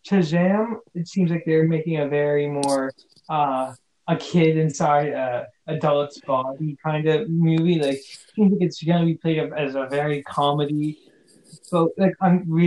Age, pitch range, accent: 20-39, 145-185 Hz, American